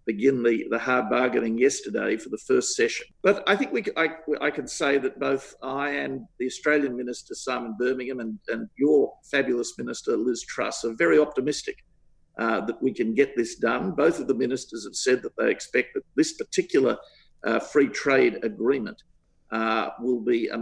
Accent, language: Australian, English